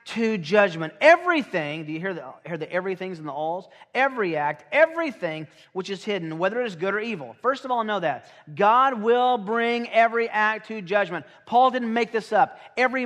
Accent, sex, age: American, male, 40-59